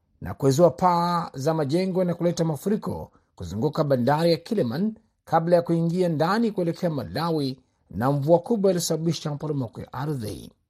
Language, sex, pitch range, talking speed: Swahili, male, 135-175 Hz, 140 wpm